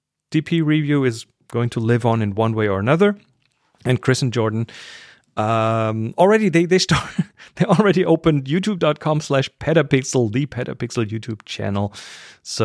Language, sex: English, male